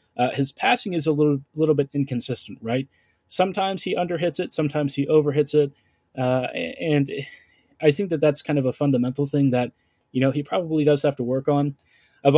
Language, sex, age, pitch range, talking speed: English, male, 20-39, 125-145 Hz, 195 wpm